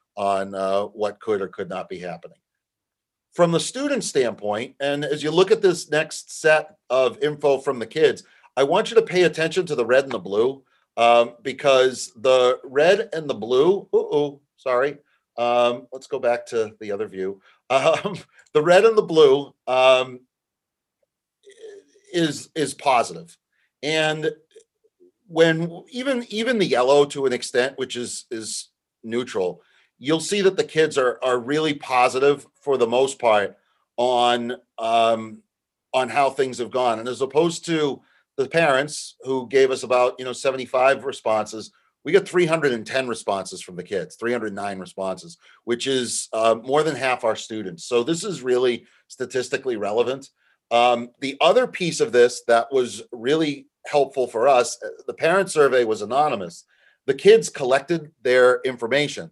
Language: English